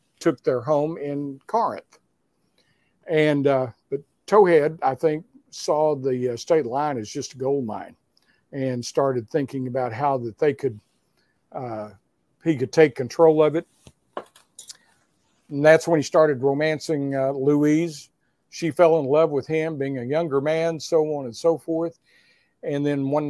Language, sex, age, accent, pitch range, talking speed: English, male, 50-69, American, 130-160 Hz, 160 wpm